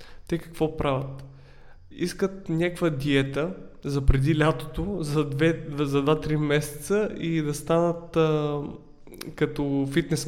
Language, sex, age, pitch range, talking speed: Bulgarian, male, 20-39, 140-165 Hz, 105 wpm